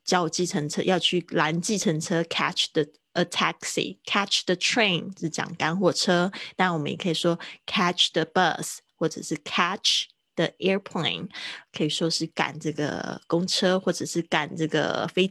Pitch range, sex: 160-190 Hz, female